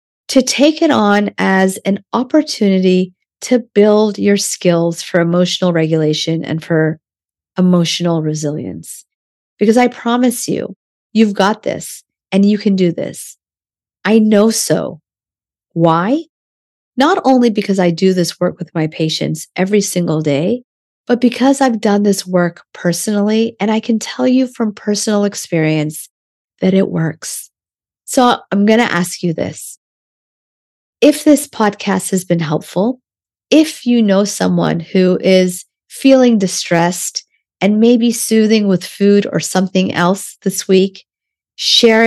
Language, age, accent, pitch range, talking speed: English, 40-59, American, 175-235 Hz, 140 wpm